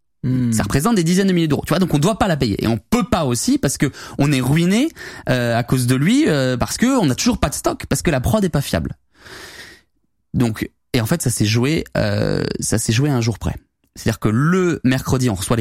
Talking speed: 260 wpm